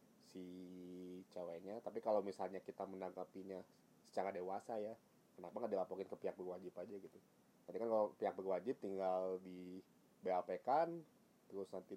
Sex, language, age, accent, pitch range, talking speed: male, Indonesian, 20-39, native, 90-105 Hz, 145 wpm